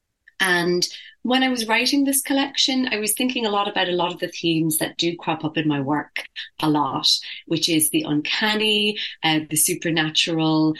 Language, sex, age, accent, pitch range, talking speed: English, female, 30-49, British, 150-180 Hz, 190 wpm